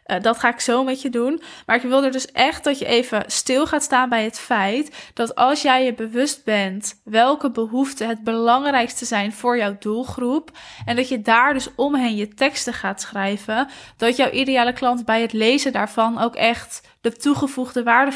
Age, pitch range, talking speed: 10-29, 220-260 Hz, 200 wpm